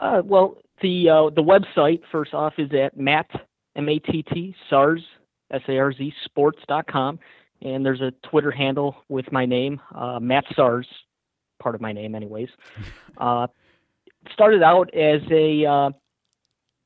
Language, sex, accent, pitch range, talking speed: English, male, American, 130-160 Hz, 160 wpm